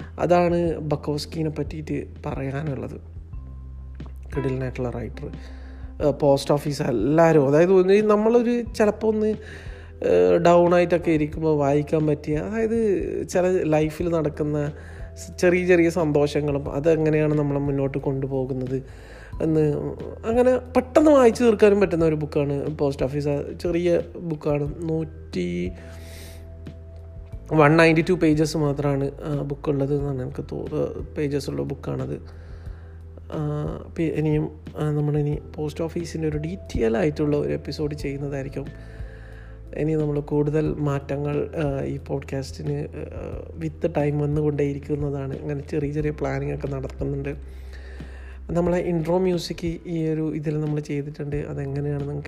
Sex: male